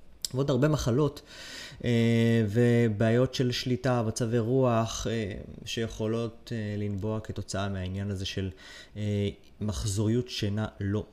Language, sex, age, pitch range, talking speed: Hebrew, male, 20-39, 100-125 Hz, 90 wpm